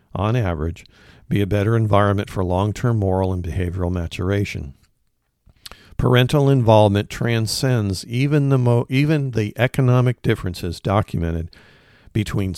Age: 50-69